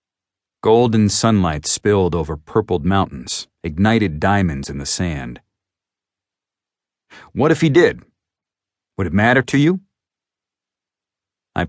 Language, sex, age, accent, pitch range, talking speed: English, male, 40-59, American, 85-110 Hz, 110 wpm